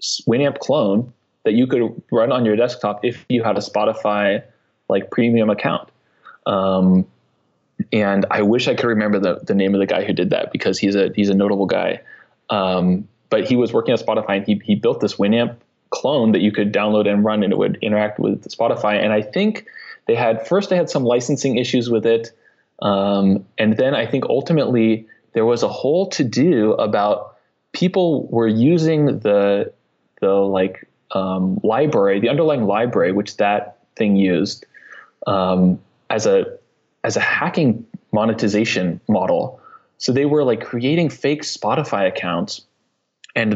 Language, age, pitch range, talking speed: English, 20-39, 100-120 Hz, 170 wpm